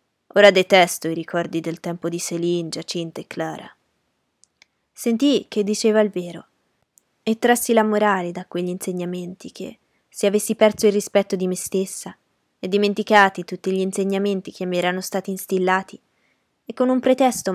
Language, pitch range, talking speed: Italian, 175-205 Hz, 155 wpm